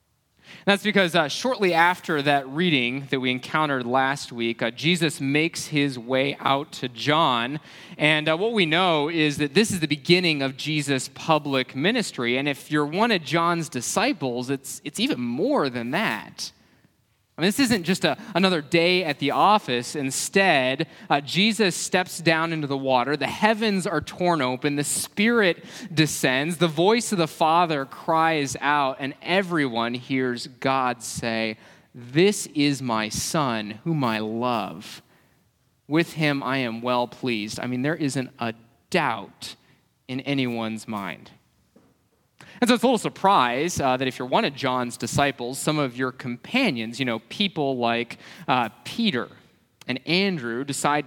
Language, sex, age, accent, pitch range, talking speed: English, male, 20-39, American, 130-175 Hz, 160 wpm